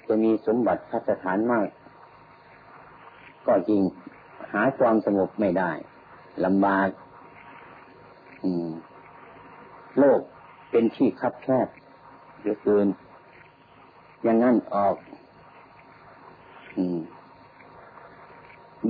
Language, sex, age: Thai, male, 50-69